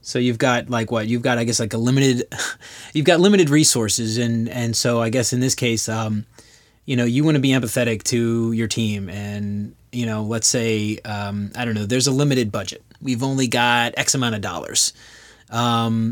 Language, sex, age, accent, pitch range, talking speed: English, male, 30-49, American, 110-125 Hz, 210 wpm